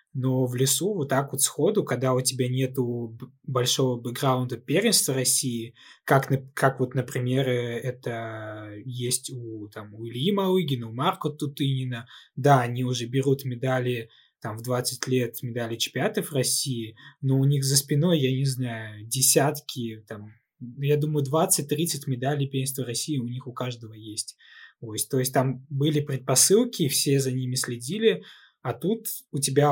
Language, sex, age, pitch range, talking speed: Russian, male, 20-39, 125-145 Hz, 145 wpm